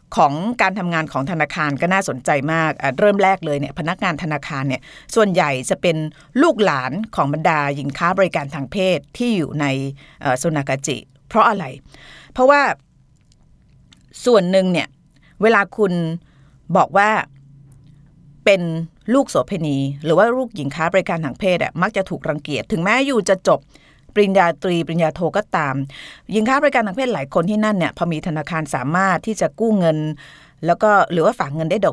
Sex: female